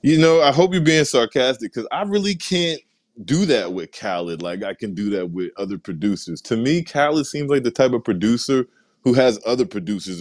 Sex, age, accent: male, 20-39, American